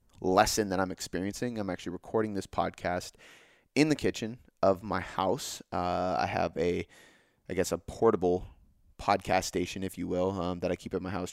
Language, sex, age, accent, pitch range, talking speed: English, male, 20-39, American, 90-110 Hz, 185 wpm